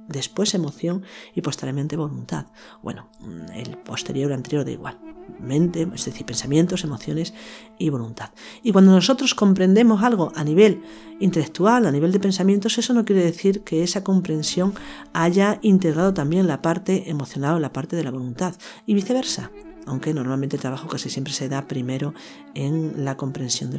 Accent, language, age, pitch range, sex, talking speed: Spanish, Spanish, 40-59, 145-200 Hz, female, 160 wpm